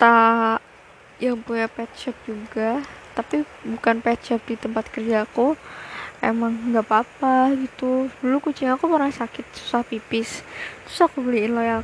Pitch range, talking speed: 230-270 Hz, 135 wpm